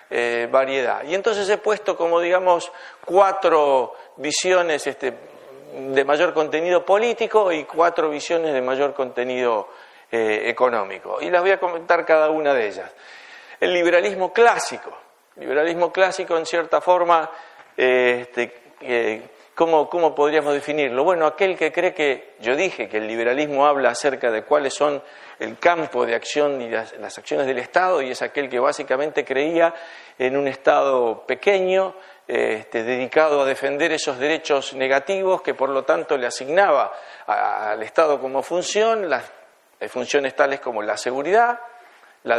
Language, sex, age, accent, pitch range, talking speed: Spanish, male, 40-59, Argentinian, 135-185 Hz, 145 wpm